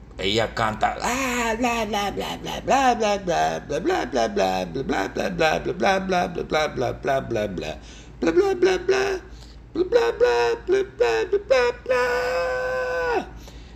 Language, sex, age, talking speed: English, male, 60-79, 135 wpm